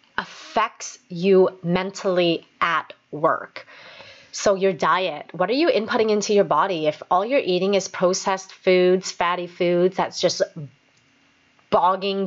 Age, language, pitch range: 30-49, English, 175-230 Hz